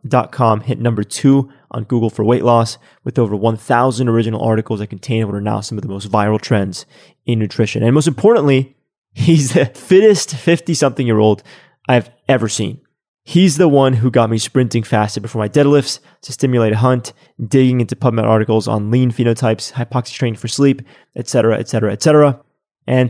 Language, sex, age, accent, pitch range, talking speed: English, male, 20-39, American, 115-140 Hz, 185 wpm